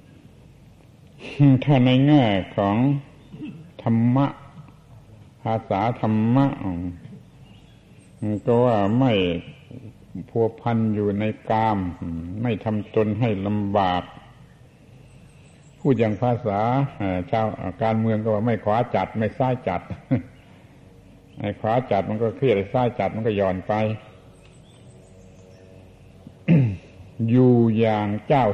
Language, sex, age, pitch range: Thai, male, 70-89, 95-120 Hz